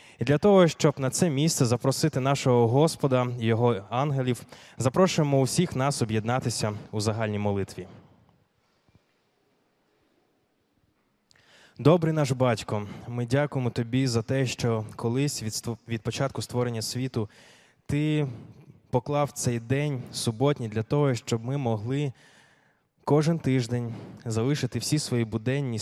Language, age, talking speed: Ukrainian, 20-39, 115 wpm